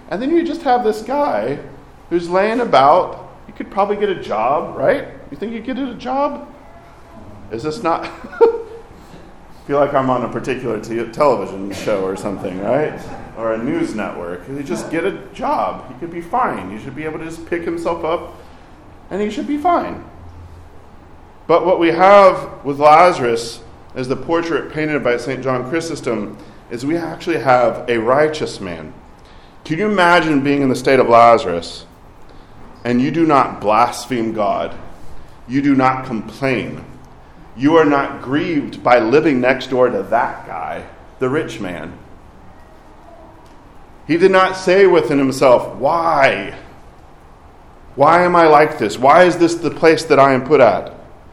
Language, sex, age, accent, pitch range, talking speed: English, male, 40-59, American, 115-175 Hz, 165 wpm